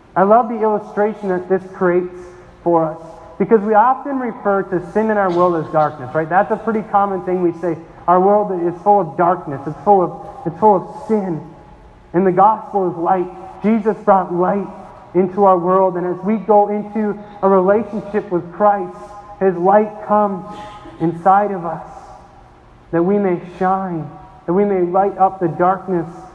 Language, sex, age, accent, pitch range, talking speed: English, male, 40-59, American, 180-210 Hz, 175 wpm